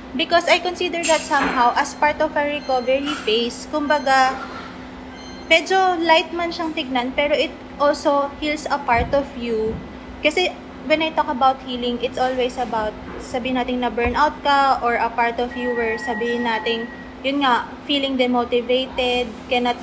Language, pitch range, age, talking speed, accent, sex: English, 245-300 Hz, 20-39, 155 wpm, Filipino, female